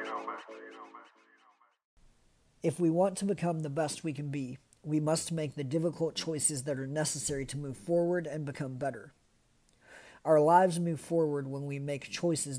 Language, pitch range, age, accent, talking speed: English, 140-160 Hz, 50-69, American, 155 wpm